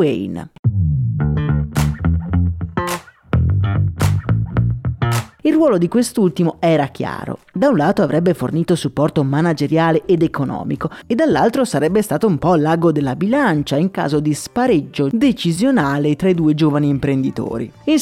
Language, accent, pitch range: Italian, native, 135-190 Hz